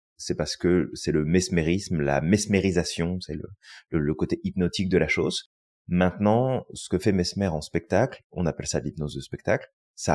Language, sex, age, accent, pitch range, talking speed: French, male, 30-49, French, 80-105 Hz, 185 wpm